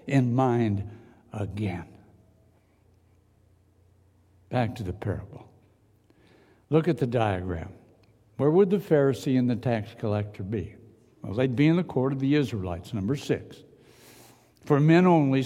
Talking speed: 130 wpm